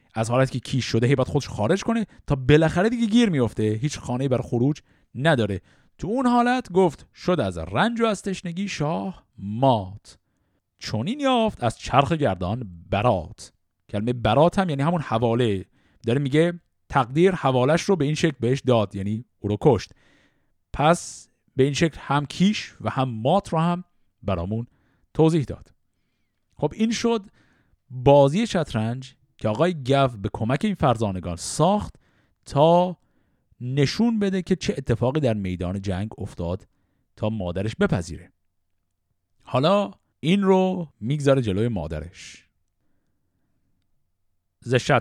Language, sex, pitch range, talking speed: Persian, male, 100-150 Hz, 140 wpm